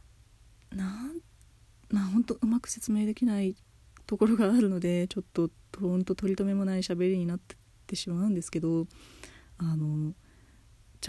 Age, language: 20-39, Japanese